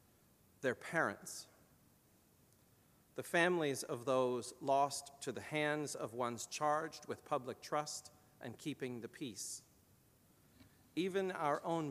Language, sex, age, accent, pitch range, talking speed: English, male, 40-59, American, 125-150 Hz, 115 wpm